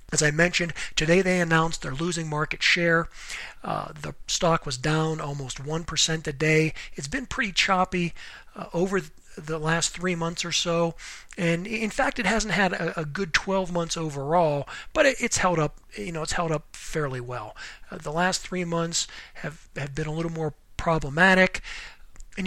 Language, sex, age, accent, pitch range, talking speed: English, male, 40-59, American, 155-180 Hz, 180 wpm